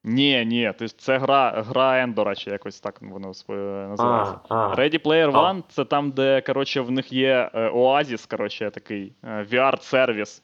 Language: Ukrainian